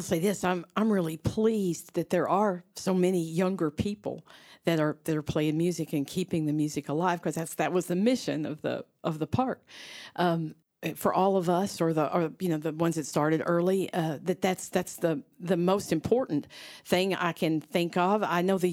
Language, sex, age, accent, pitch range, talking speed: English, female, 50-69, American, 170-205 Hz, 210 wpm